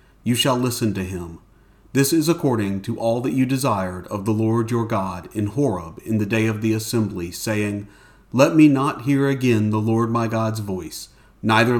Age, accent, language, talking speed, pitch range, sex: 40-59, American, English, 195 wpm, 95-125 Hz, male